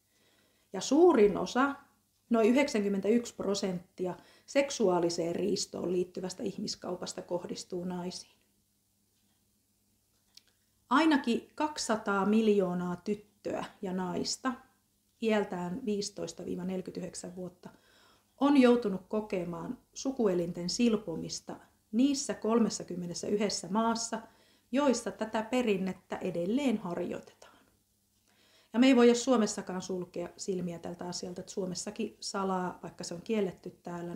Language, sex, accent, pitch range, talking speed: Finnish, female, native, 180-230 Hz, 90 wpm